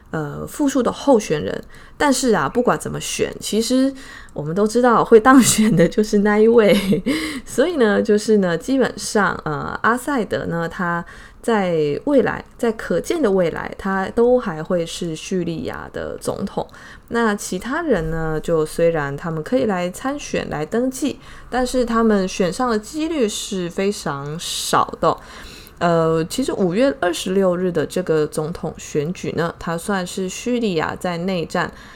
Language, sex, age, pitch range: Chinese, female, 20-39, 165-235 Hz